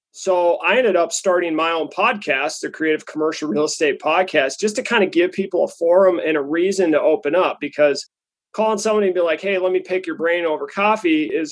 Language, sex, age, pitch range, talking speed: English, male, 30-49, 155-195 Hz, 225 wpm